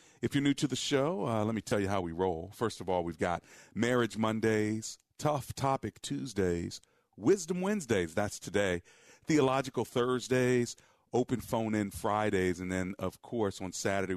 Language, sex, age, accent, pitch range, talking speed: English, male, 40-59, American, 85-110 Hz, 165 wpm